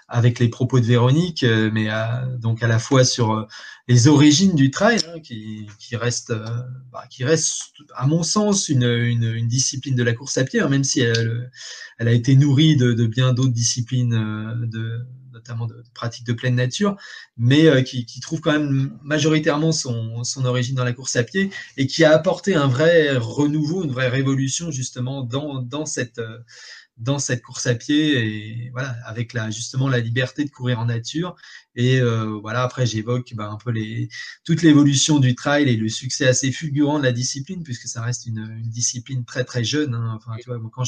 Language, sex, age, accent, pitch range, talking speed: French, male, 20-39, French, 120-150 Hz, 190 wpm